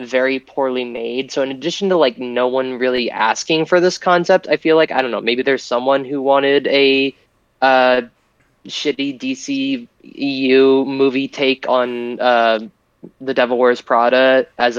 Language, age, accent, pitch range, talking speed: English, 20-39, American, 120-140 Hz, 160 wpm